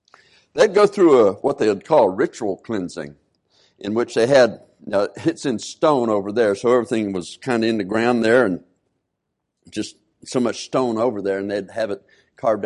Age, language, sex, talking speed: 60-79, English, male, 200 wpm